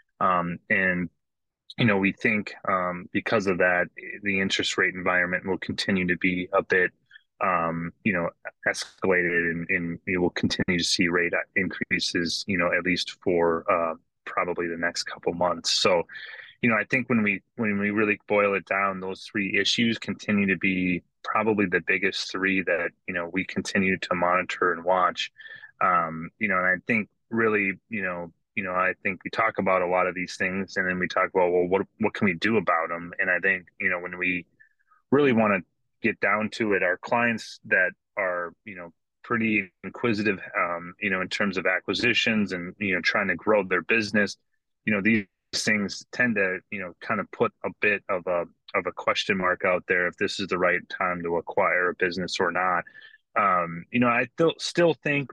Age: 20-39